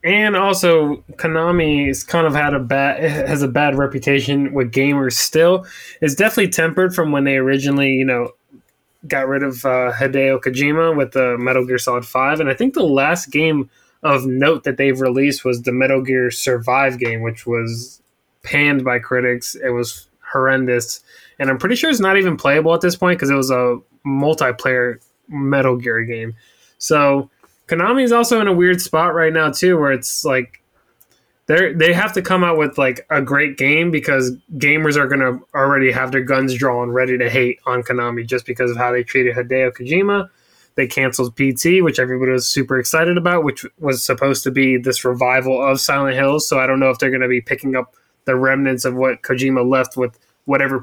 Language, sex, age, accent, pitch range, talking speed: English, male, 20-39, American, 130-155 Hz, 195 wpm